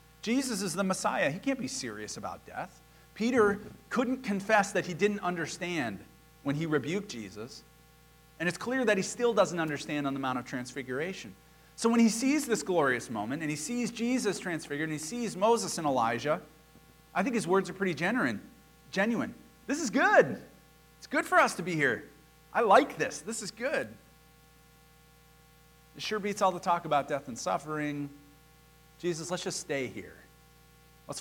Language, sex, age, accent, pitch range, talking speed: English, male, 40-59, American, 140-190 Hz, 175 wpm